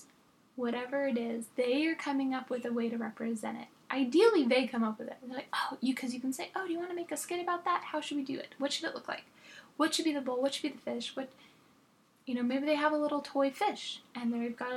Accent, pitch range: American, 245-285 Hz